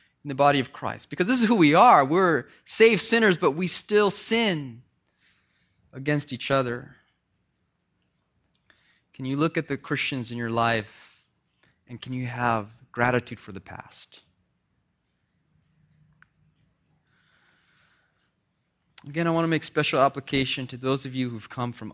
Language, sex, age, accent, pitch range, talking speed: English, male, 20-39, American, 100-145 Hz, 140 wpm